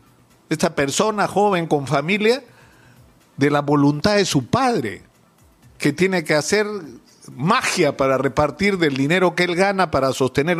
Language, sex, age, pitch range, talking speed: Spanish, male, 50-69, 145-185 Hz, 140 wpm